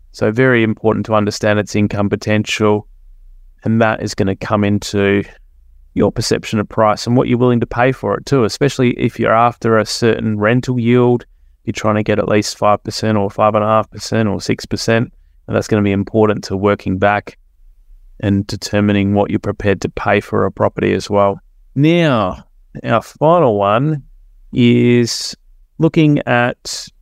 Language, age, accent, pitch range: English, 30-49, Australian, 100-120 Hz